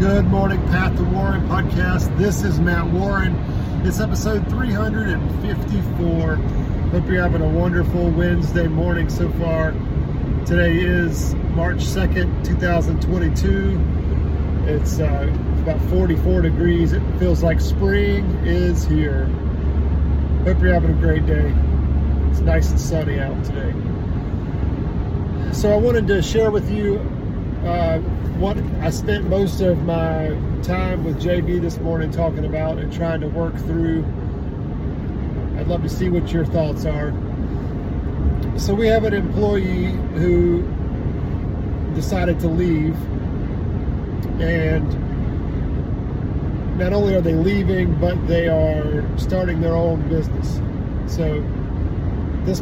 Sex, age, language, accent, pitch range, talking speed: male, 40-59, English, American, 75-90 Hz, 125 wpm